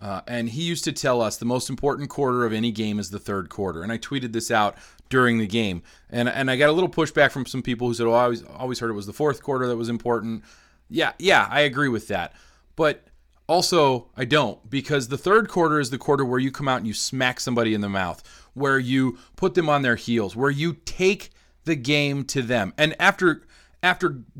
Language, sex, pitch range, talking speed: English, male, 120-165 Hz, 240 wpm